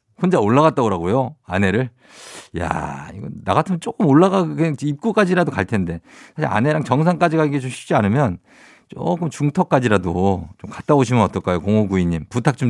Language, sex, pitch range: Korean, male, 100-145 Hz